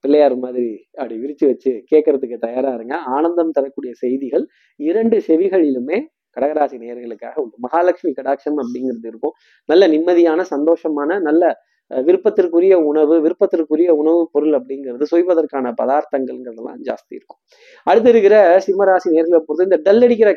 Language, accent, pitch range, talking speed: Tamil, native, 145-190 Hz, 125 wpm